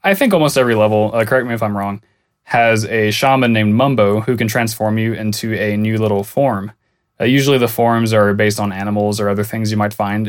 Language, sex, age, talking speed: English, male, 20-39, 225 wpm